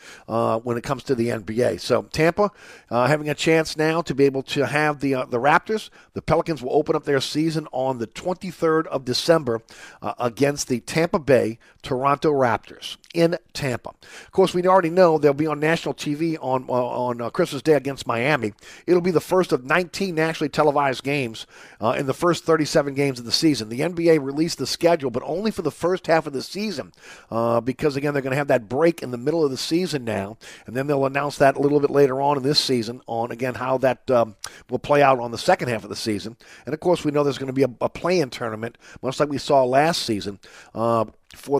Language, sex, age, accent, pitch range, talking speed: English, male, 50-69, American, 125-165 Hz, 230 wpm